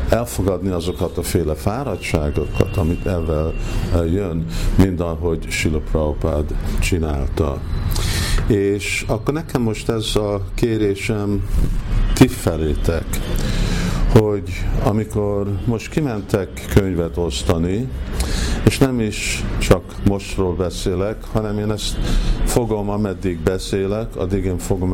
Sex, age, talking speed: male, 50-69, 100 wpm